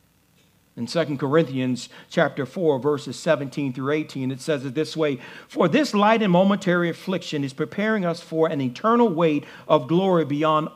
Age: 50-69